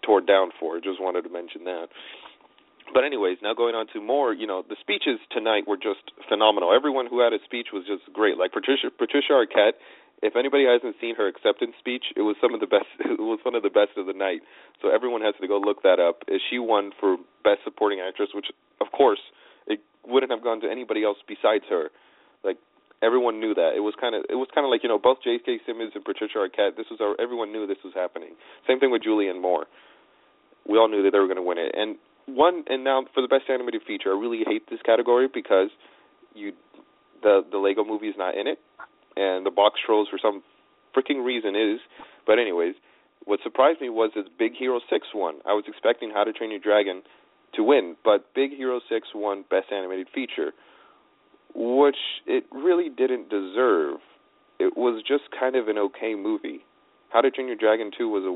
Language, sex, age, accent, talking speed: English, male, 30-49, American, 215 wpm